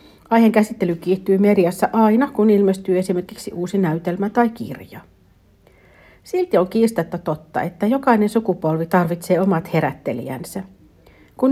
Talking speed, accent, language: 120 wpm, native, Finnish